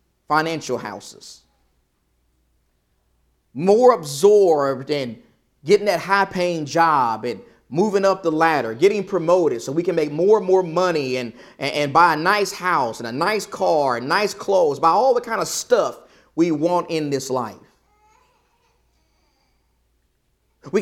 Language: English